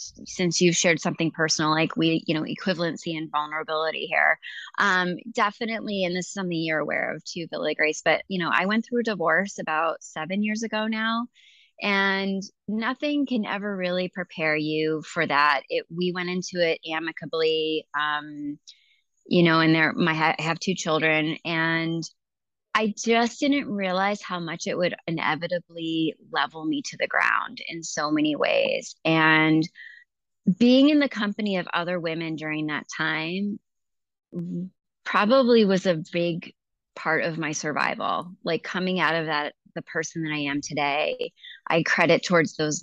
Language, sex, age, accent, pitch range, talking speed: English, female, 20-39, American, 165-205 Hz, 165 wpm